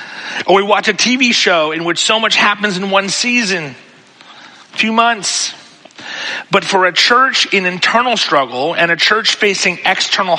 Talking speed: 170 wpm